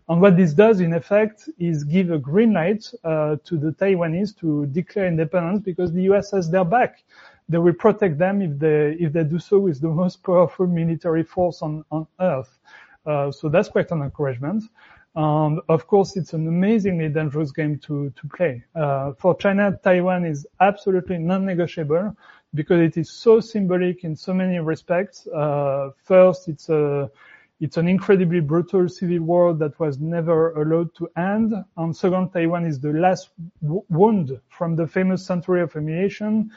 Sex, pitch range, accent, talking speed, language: male, 155-190 Hz, French, 175 wpm, English